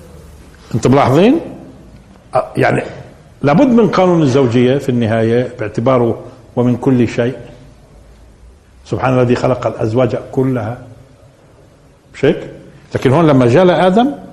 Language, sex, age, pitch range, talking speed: Arabic, male, 50-69, 115-165 Hz, 100 wpm